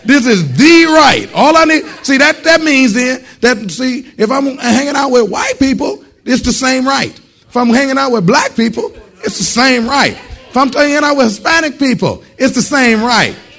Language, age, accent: English, 40-59, American